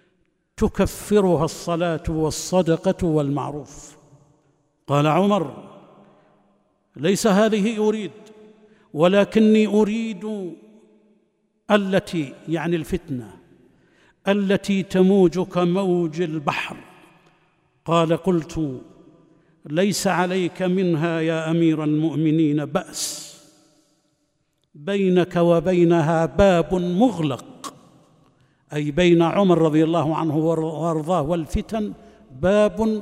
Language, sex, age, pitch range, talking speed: Arabic, male, 60-79, 155-200 Hz, 75 wpm